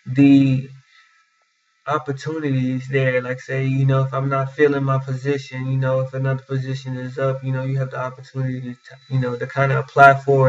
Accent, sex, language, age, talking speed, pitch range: American, male, English, 20-39, 195 wpm, 130-140 Hz